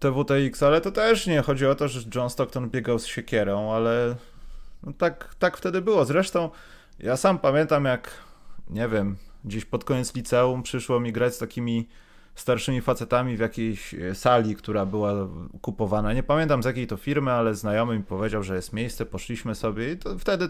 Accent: native